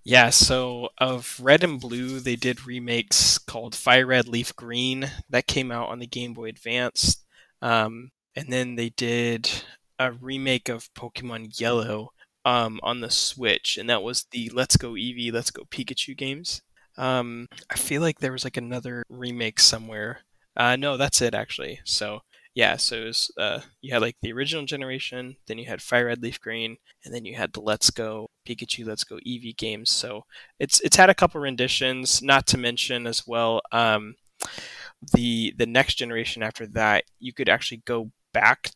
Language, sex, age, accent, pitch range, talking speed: English, male, 20-39, American, 115-130 Hz, 180 wpm